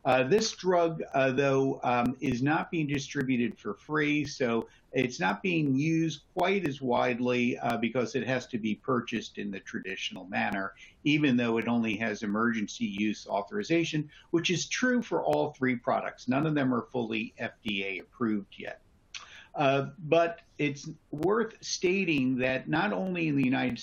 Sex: male